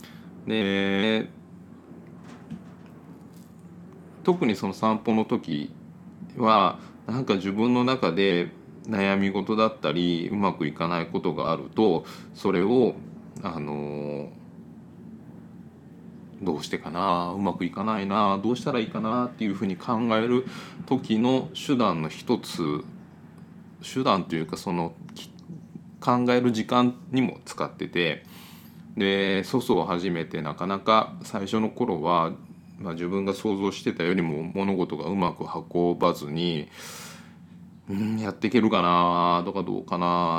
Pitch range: 85-120 Hz